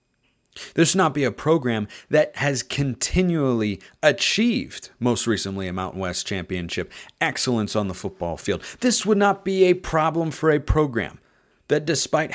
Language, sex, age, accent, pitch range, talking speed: English, male, 30-49, American, 100-145 Hz, 155 wpm